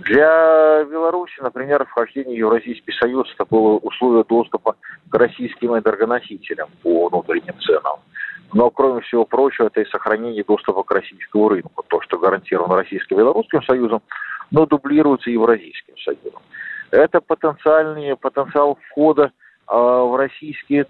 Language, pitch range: Russian, 120-170 Hz